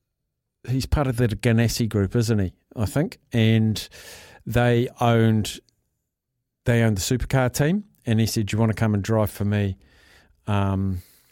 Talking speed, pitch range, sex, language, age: 165 wpm, 105-130 Hz, male, English, 50-69